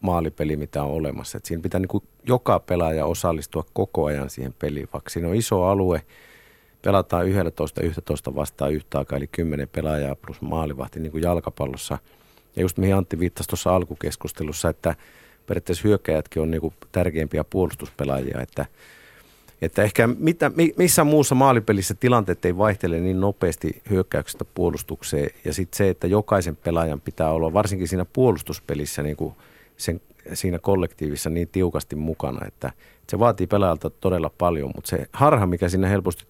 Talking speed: 160 wpm